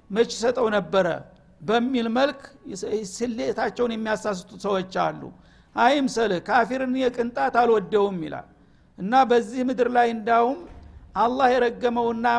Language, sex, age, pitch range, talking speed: Amharic, male, 60-79, 220-250 Hz, 90 wpm